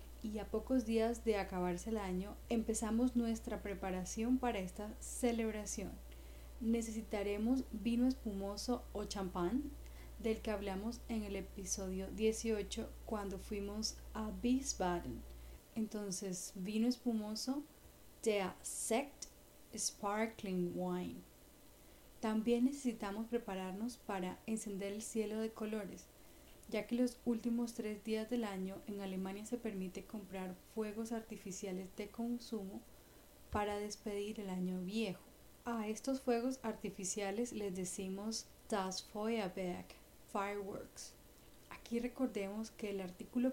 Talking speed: 115 wpm